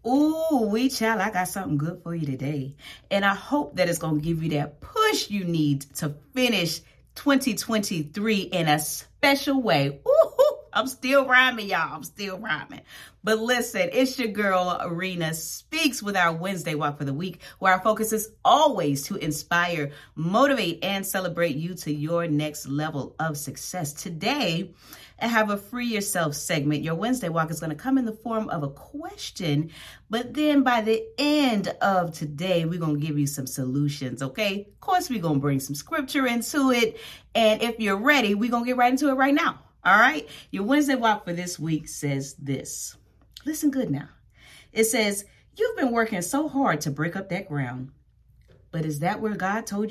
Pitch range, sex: 145-235 Hz, female